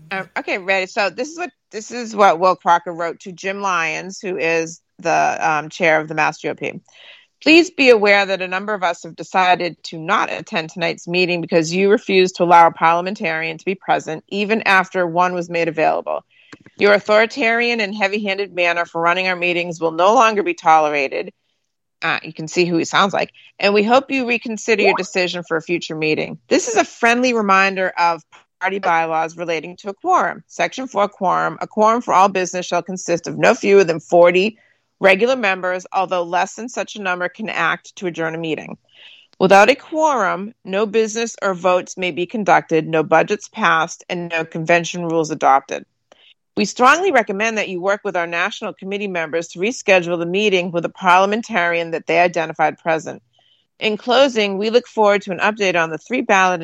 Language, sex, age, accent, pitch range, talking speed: English, female, 40-59, American, 170-210 Hz, 195 wpm